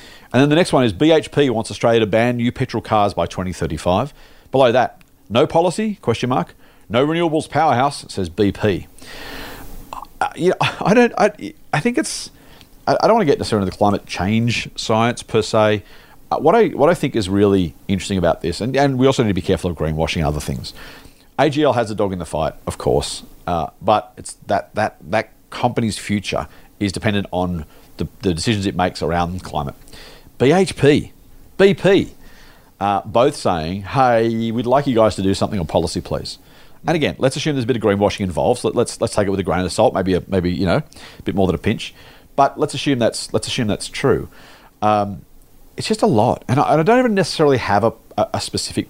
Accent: Australian